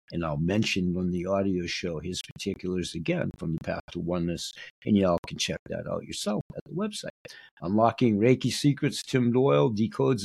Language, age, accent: English, 60-79, American